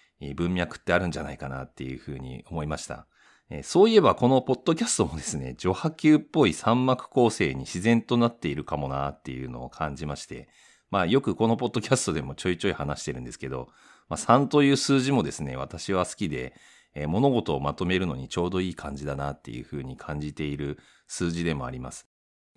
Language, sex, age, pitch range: Japanese, male, 40-59, 70-115 Hz